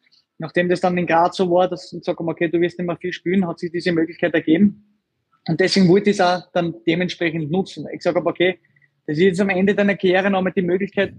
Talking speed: 240 wpm